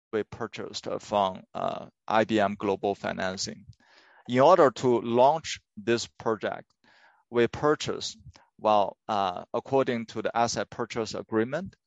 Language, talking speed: English, 115 wpm